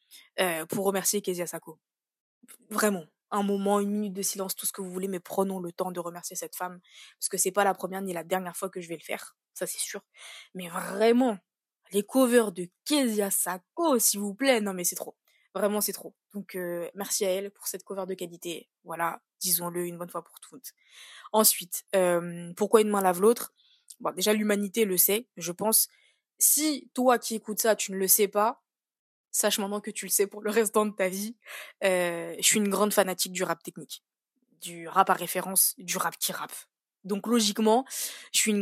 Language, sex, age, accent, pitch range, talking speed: French, female, 20-39, French, 185-220 Hz, 210 wpm